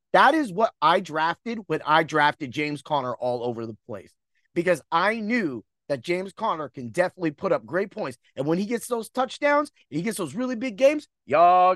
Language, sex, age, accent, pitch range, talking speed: English, male, 30-49, American, 155-235 Hz, 200 wpm